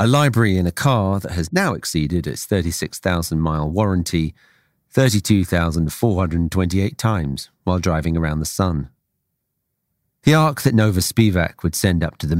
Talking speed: 140 wpm